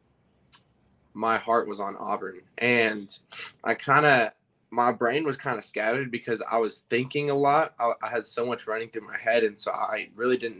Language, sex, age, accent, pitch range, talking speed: English, male, 20-39, American, 105-120 Hz, 200 wpm